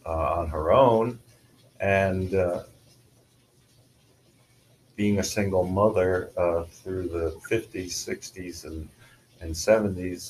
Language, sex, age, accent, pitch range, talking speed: English, male, 50-69, American, 90-125 Hz, 105 wpm